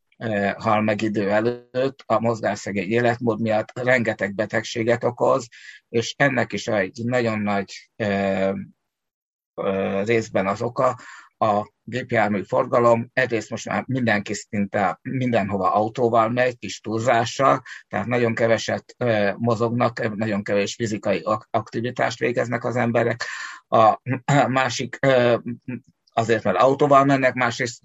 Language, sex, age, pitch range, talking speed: Hungarian, male, 60-79, 105-120 Hz, 110 wpm